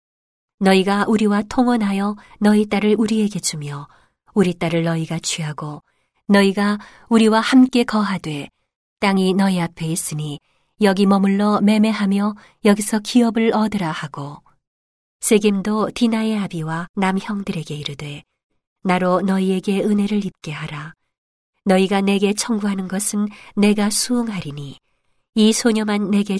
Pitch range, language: 170-215 Hz, Korean